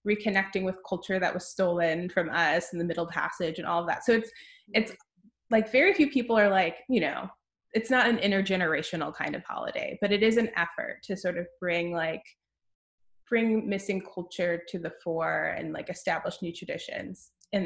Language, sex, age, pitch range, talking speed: English, female, 20-39, 180-230 Hz, 190 wpm